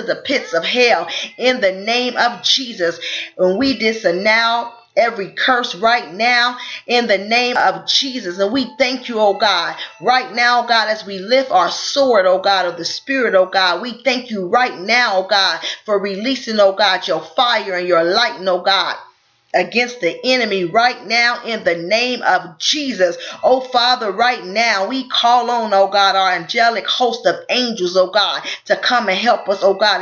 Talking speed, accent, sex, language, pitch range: 185 wpm, American, female, English, 195-245 Hz